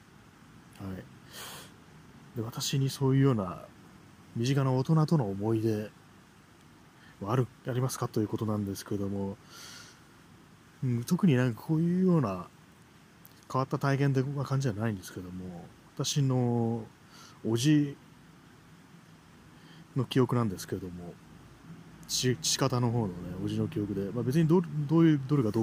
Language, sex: Japanese, male